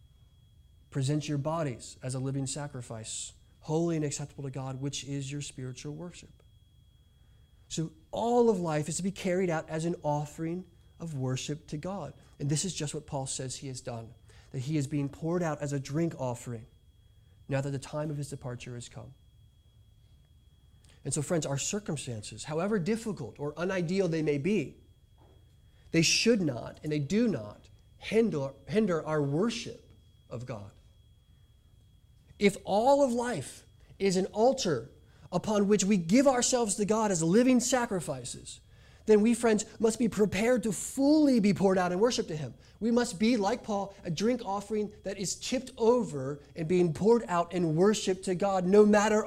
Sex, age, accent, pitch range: male, 30-49, American, 125-200 Hz